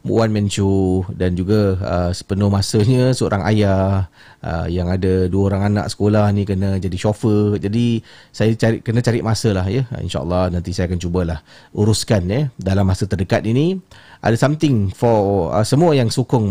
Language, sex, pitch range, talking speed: Malay, male, 100-130 Hz, 170 wpm